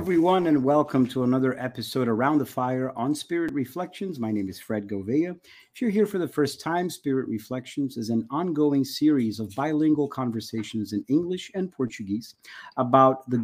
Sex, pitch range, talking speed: male, 120-150 Hz, 175 wpm